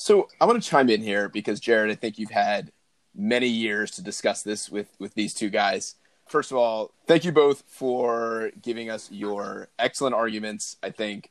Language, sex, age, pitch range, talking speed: English, male, 30-49, 110-135 Hz, 195 wpm